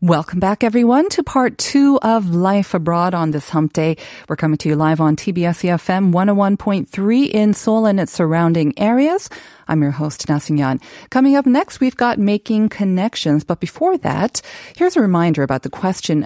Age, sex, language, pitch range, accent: 40-59, female, Korean, 155-220 Hz, American